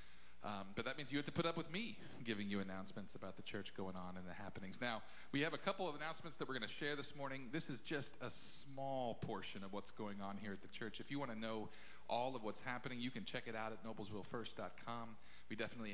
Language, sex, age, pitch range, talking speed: English, male, 40-59, 105-160 Hz, 255 wpm